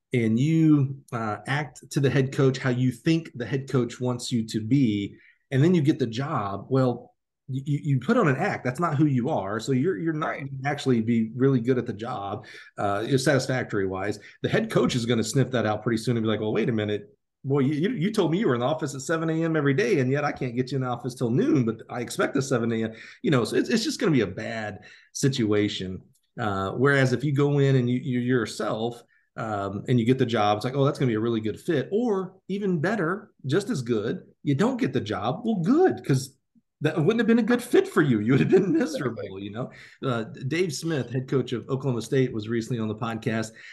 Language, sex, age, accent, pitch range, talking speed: English, male, 40-59, American, 115-140 Hz, 250 wpm